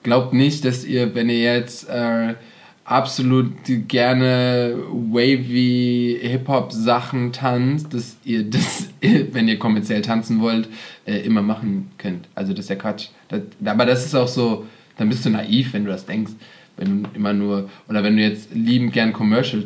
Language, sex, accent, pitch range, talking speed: German, male, German, 110-135 Hz, 165 wpm